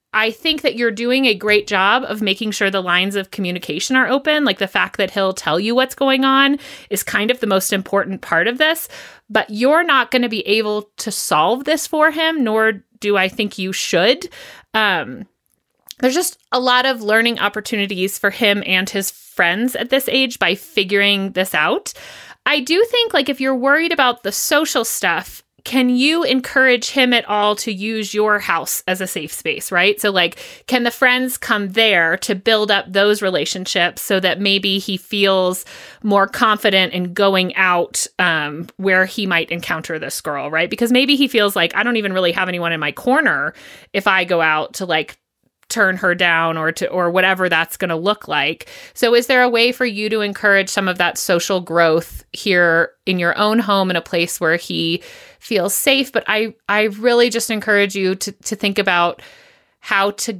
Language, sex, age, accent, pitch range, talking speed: English, female, 30-49, American, 190-245 Hz, 200 wpm